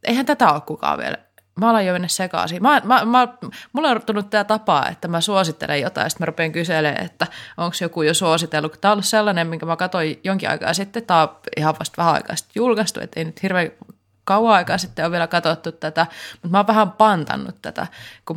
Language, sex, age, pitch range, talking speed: Finnish, female, 20-39, 160-190 Hz, 215 wpm